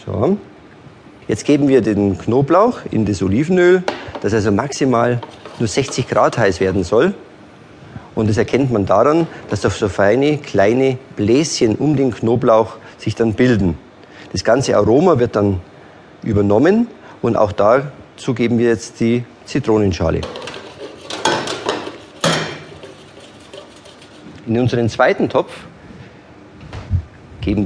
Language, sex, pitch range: German, male, 105-130 Hz